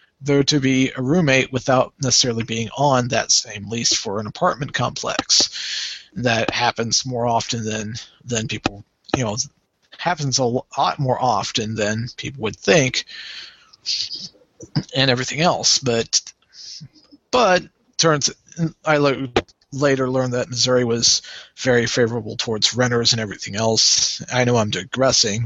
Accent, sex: American, male